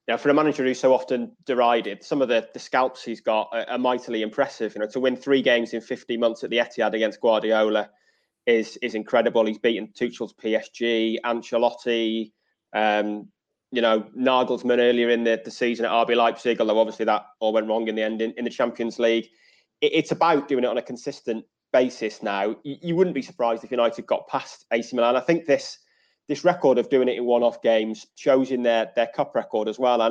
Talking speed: 215 wpm